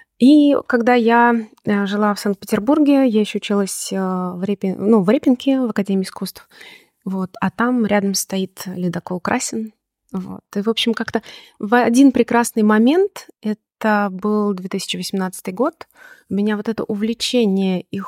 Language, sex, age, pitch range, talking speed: Russian, female, 20-39, 190-235 Hz, 130 wpm